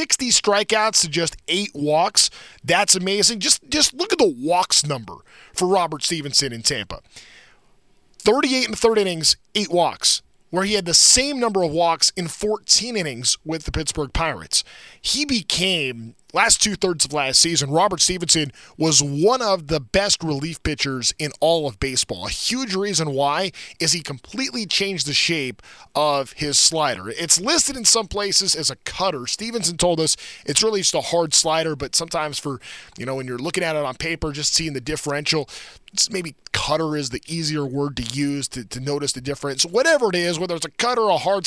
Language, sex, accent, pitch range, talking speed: English, male, American, 145-200 Hz, 190 wpm